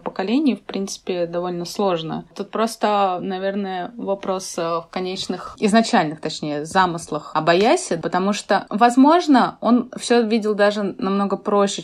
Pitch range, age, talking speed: 170-205 Hz, 20-39, 120 wpm